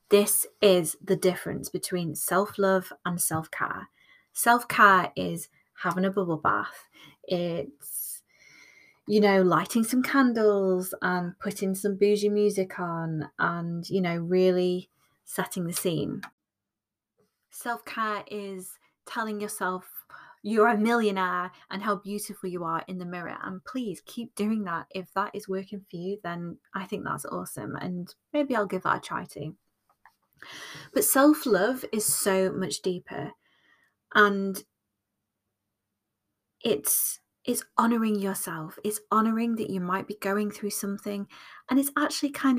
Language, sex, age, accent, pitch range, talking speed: English, female, 20-39, British, 180-215 Hz, 135 wpm